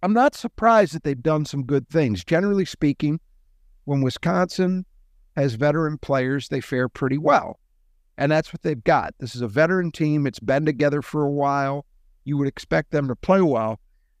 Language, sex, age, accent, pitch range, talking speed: English, male, 50-69, American, 125-165 Hz, 180 wpm